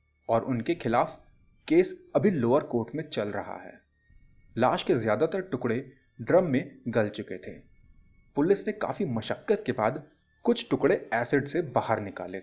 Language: Hindi